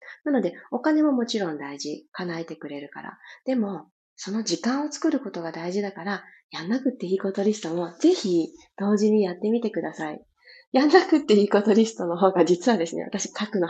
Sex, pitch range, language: female, 180-275 Hz, Japanese